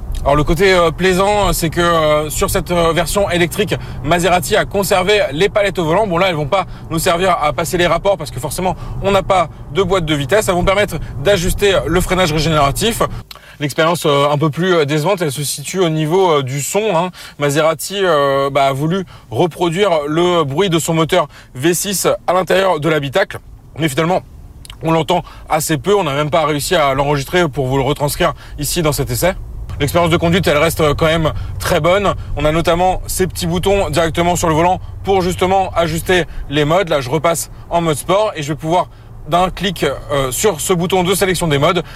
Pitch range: 145-185 Hz